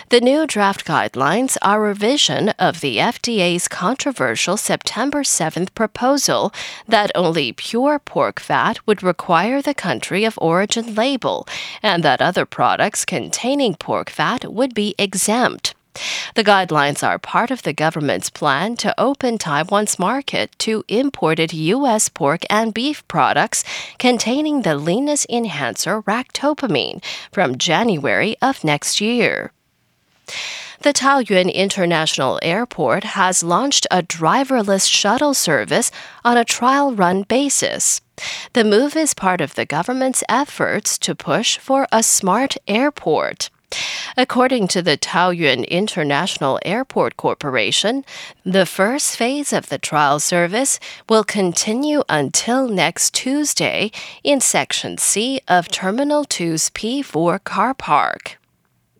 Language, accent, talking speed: English, American, 125 wpm